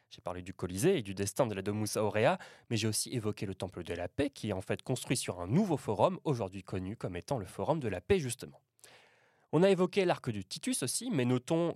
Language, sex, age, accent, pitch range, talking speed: French, male, 20-39, French, 105-150 Hz, 245 wpm